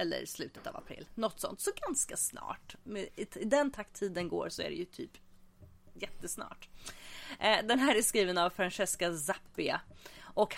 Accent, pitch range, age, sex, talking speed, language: Swedish, 165-225 Hz, 30-49, female, 160 wpm, English